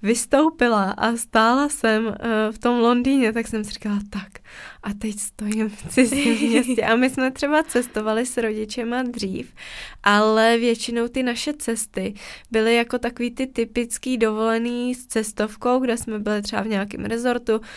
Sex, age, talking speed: female, 20-39, 155 wpm